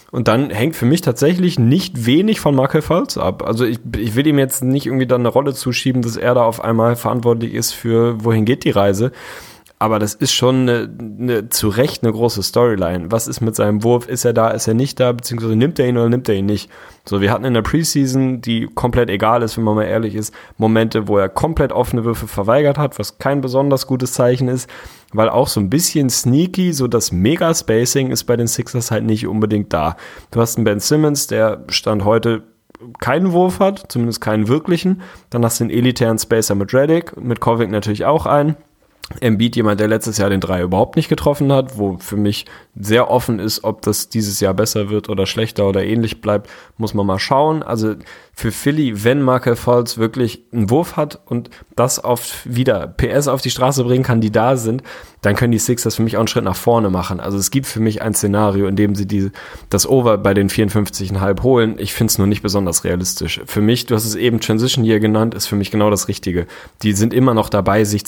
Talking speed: 225 wpm